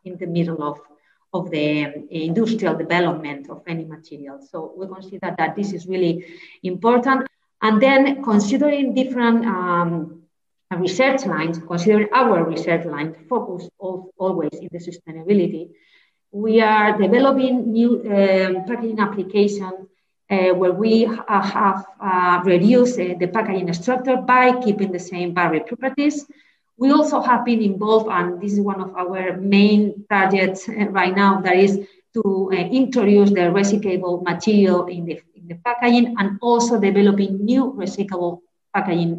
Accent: Spanish